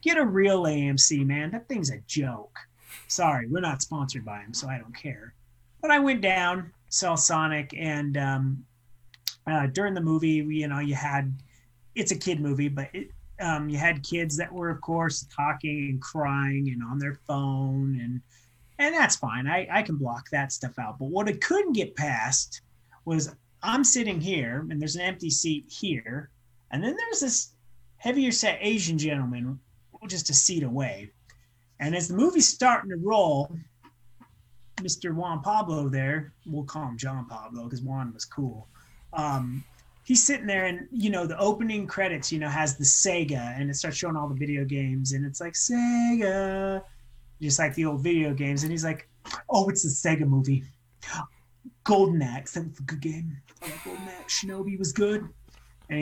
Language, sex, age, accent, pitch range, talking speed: English, male, 30-49, American, 130-180 Hz, 180 wpm